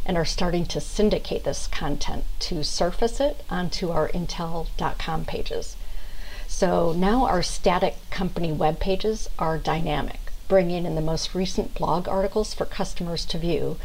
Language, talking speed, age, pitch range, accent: English, 145 wpm, 50-69, 155-190 Hz, American